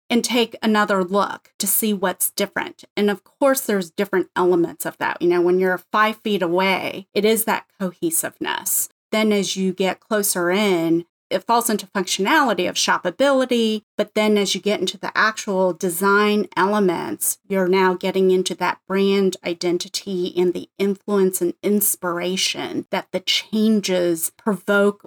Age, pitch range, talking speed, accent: 30-49, 180-210 Hz, 155 wpm, American